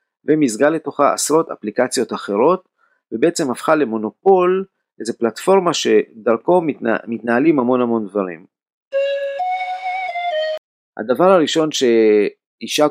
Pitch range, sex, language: 110-150 Hz, male, Hebrew